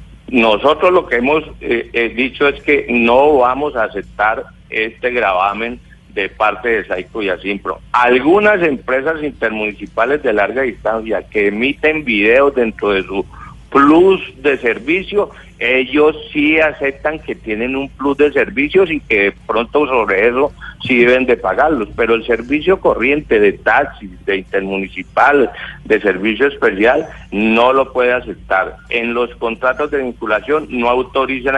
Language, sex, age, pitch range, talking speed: Spanish, male, 50-69, 110-150 Hz, 145 wpm